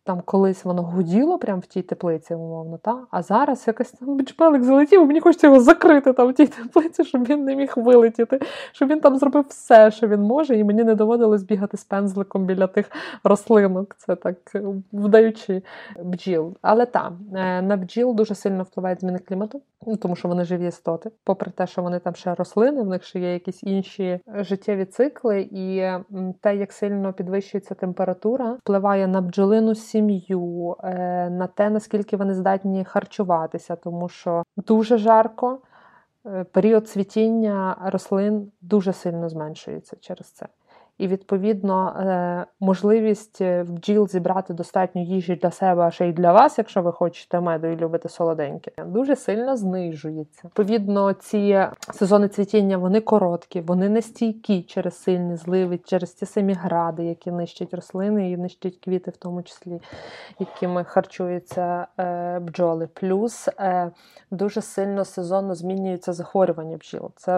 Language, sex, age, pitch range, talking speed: Ukrainian, female, 20-39, 180-220 Hz, 150 wpm